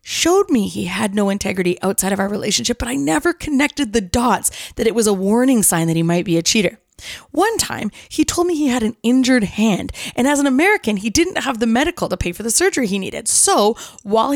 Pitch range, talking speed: 210-310 Hz, 235 wpm